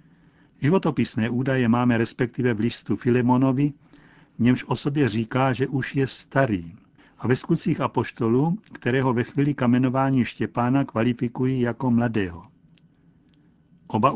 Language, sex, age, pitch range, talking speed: Czech, male, 60-79, 115-135 Hz, 115 wpm